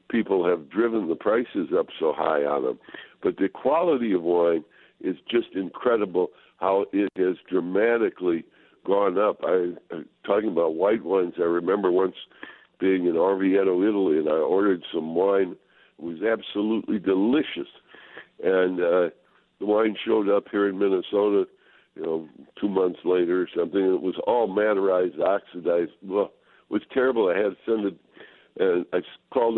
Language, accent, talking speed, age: English, American, 160 wpm, 60-79